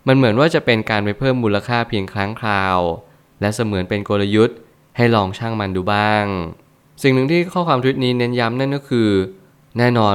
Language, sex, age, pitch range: Thai, male, 20-39, 100-125 Hz